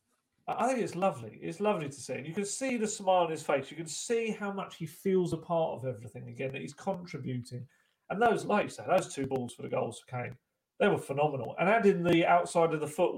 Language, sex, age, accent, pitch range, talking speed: English, male, 40-59, British, 140-185 Hz, 245 wpm